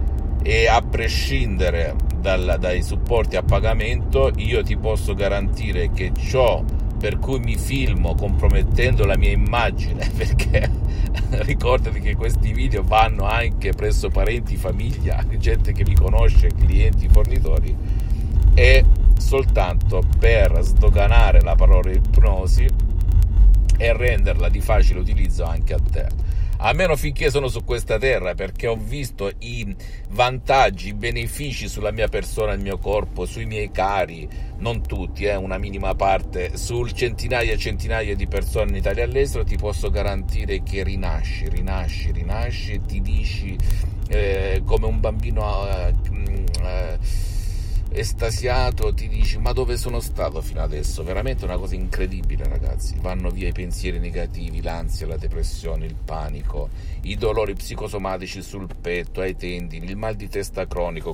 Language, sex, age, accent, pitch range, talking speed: Italian, male, 50-69, native, 85-100 Hz, 140 wpm